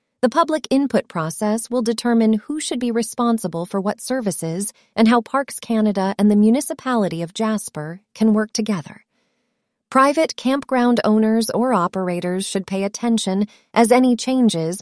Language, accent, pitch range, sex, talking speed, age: English, American, 190-245 Hz, female, 145 wpm, 30-49